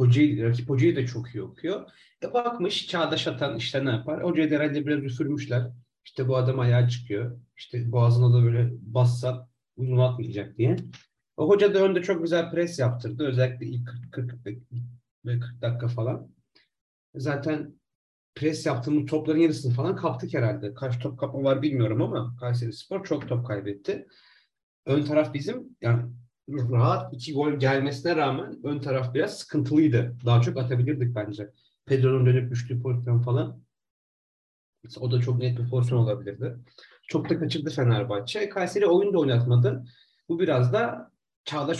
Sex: male